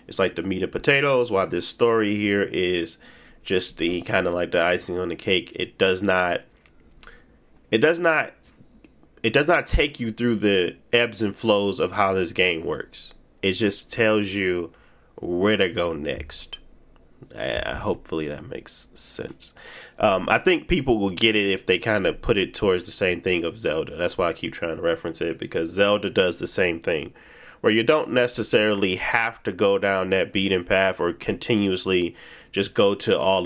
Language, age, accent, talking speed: English, 30-49, American, 185 wpm